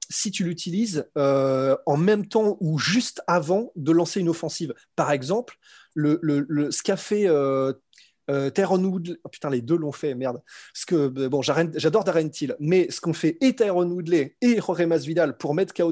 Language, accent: French, French